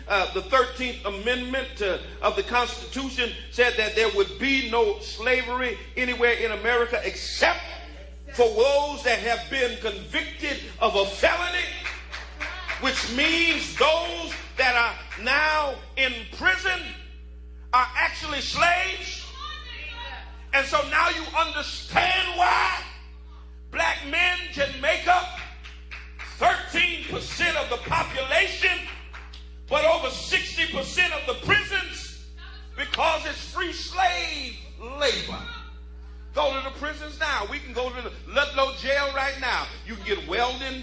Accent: American